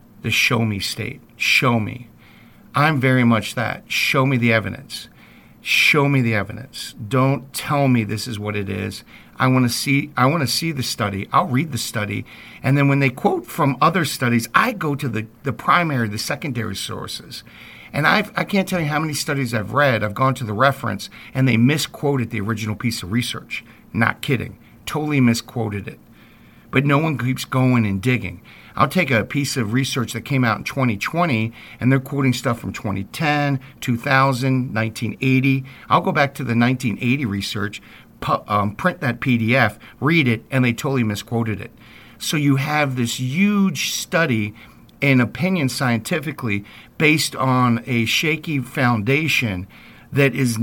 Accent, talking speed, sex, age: American, 175 wpm, male, 50-69